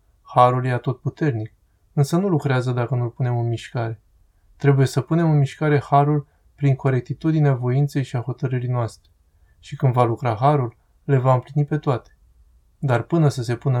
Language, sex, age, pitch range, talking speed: Romanian, male, 20-39, 115-150 Hz, 170 wpm